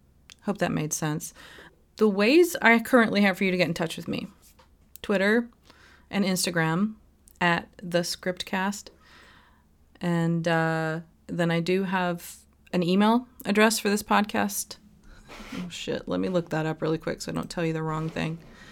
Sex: female